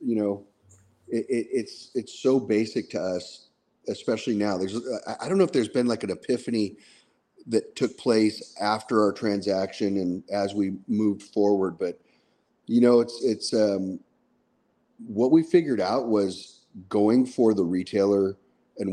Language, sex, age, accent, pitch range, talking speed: English, male, 40-59, American, 100-125 Hz, 150 wpm